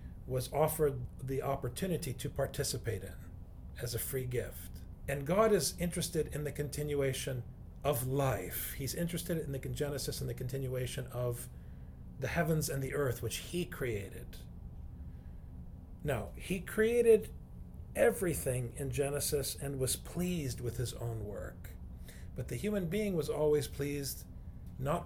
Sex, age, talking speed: male, 40-59, 140 wpm